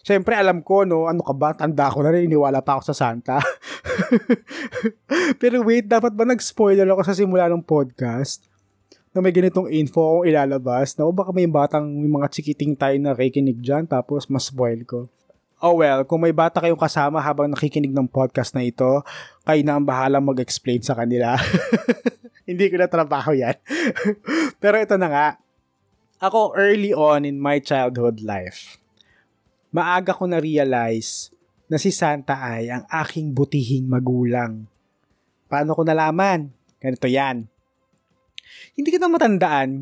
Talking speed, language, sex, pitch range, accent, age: 150 wpm, Filipino, male, 125-175 Hz, native, 20-39